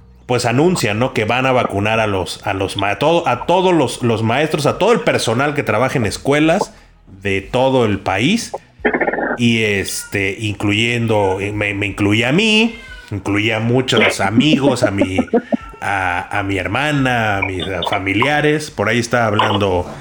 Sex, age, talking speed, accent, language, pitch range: male, 30-49, 160 wpm, Mexican, Spanish, 105-145 Hz